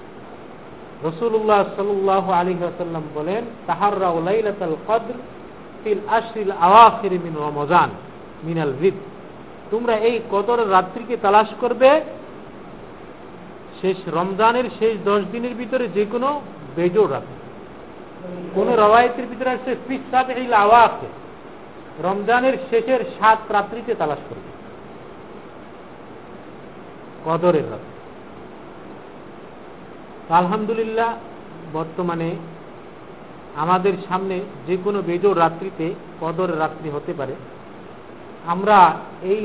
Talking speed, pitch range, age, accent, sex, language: 50 wpm, 170-225 Hz, 50-69, native, male, Bengali